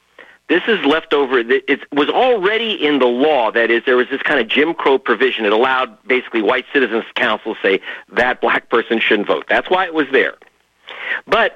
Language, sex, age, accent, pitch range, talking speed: English, male, 50-69, American, 115-165 Hz, 200 wpm